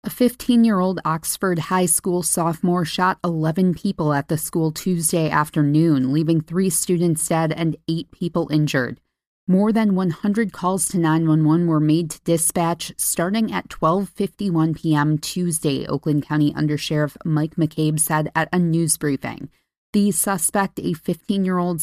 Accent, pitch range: American, 155-180 Hz